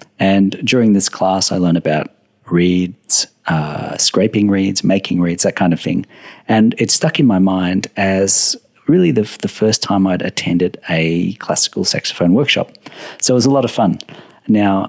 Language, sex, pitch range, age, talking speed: English, male, 90-115 Hz, 50-69, 175 wpm